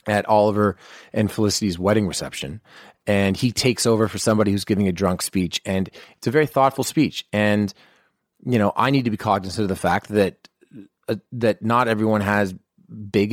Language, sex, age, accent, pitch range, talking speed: English, male, 30-49, American, 95-120 Hz, 185 wpm